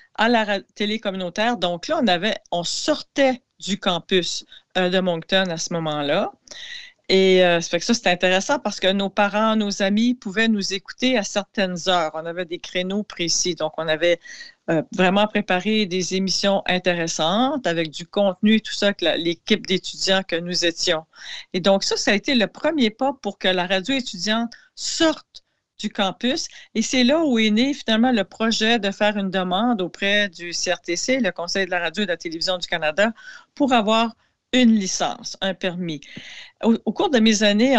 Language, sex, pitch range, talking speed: French, female, 180-225 Hz, 190 wpm